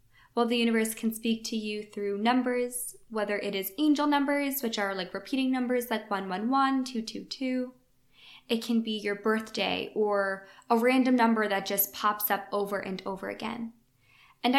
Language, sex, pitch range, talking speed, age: English, female, 200-240 Hz, 180 wpm, 10-29